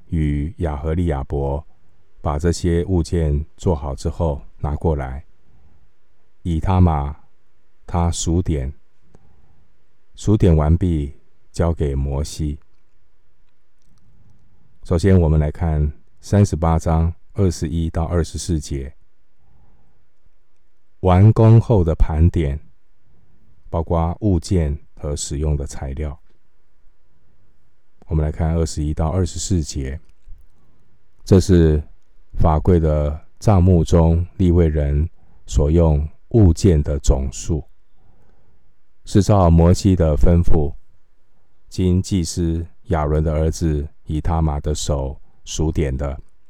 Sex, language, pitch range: male, Chinese, 75-90 Hz